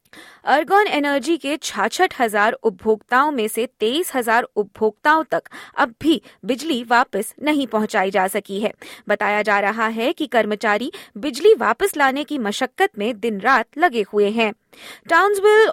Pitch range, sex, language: 215-305 Hz, female, Hindi